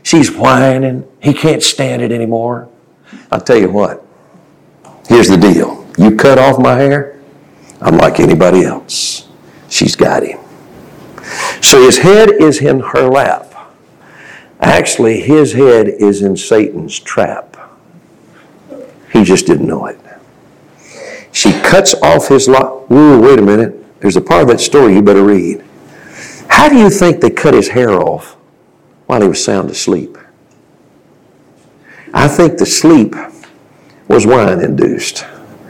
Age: 60-79